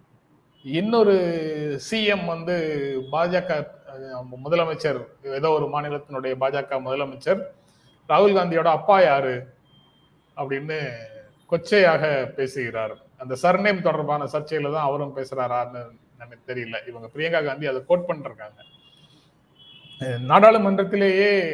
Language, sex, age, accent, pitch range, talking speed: Tamil, male, 30-49, native, 135-165 Hz, 85 wpm